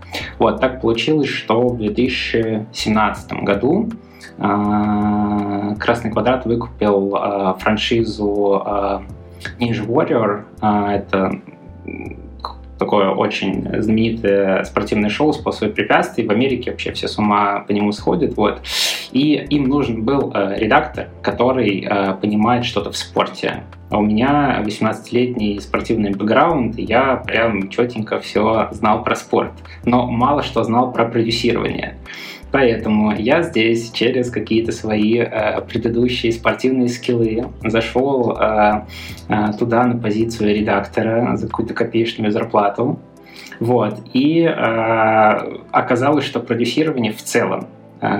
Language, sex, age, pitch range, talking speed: Russian, male, 20-39, 105-120 Hz, 115 wpm